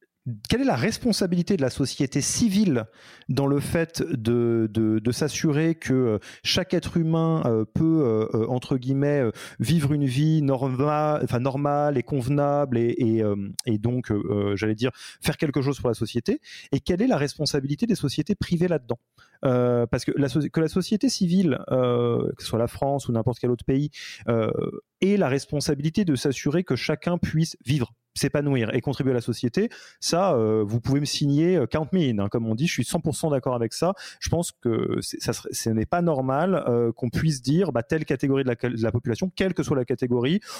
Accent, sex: French, male